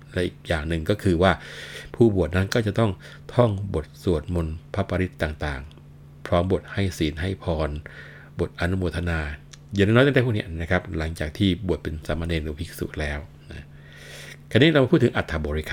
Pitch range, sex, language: 75-95 Hz, male, Thai